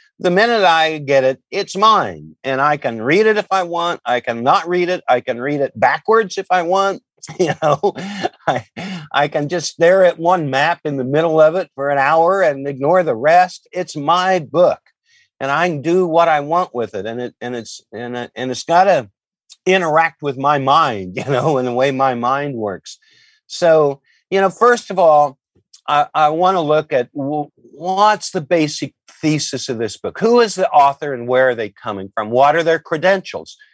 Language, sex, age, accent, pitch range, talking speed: English, male, 50-69, American, 135-175 Hz, 210 wpm